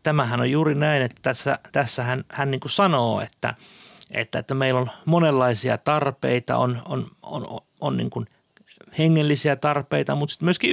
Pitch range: 115-150 Hz